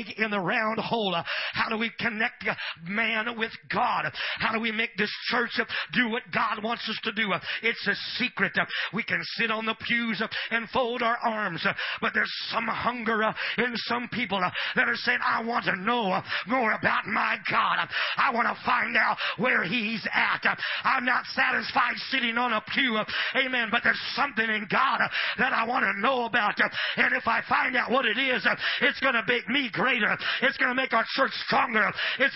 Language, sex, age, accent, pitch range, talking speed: English, male, 40-59, American, 220-260 Hz, 195 wpm